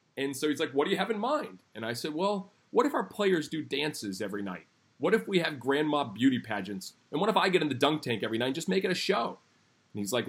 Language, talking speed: English, 285 wpm